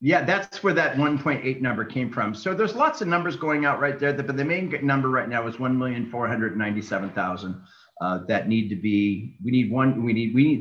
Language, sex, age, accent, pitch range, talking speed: English, male, 40-59, American, 110-140 Hz, 200 wpm